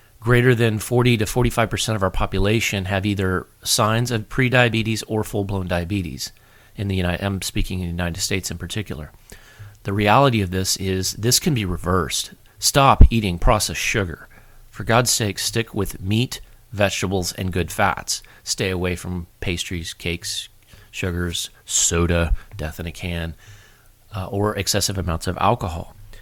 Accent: American